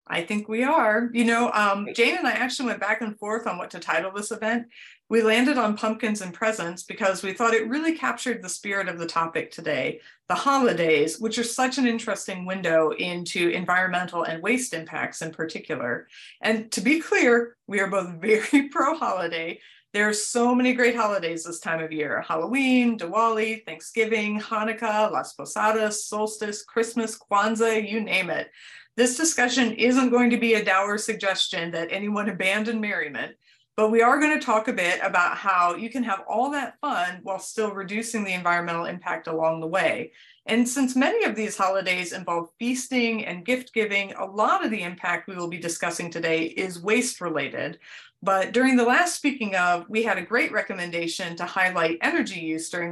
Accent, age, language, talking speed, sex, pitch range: American, 40-59, English, 185 wpm, female, 180-240 Hz